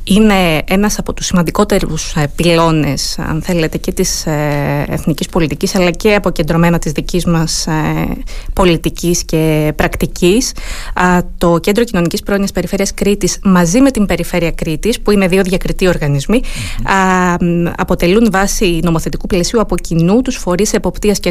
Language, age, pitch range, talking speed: Greek, 20-39, 170-200 Hz, 130 wpm